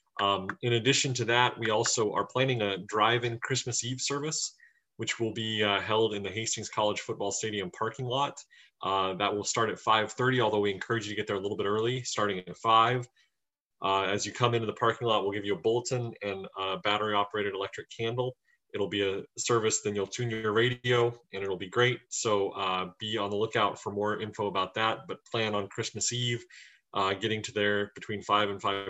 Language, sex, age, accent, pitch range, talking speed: English, male, 30-49, American, 100-120 Hz, 210 wpm